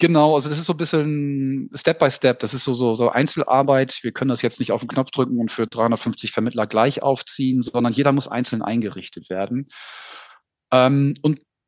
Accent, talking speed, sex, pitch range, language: German, 195 wpm, male, 115-135 Hz, German